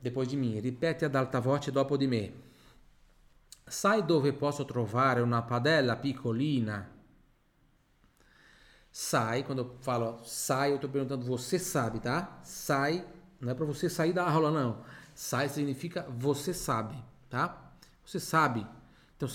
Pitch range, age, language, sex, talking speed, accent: 120-160 Hz, 40-59, Italian, male, 140 wpm, Brazilian